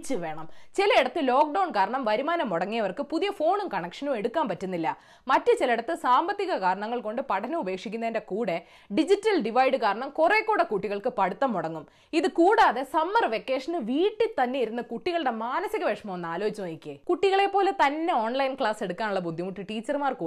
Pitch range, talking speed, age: 195-330 Hz, 130 wpm, 20-39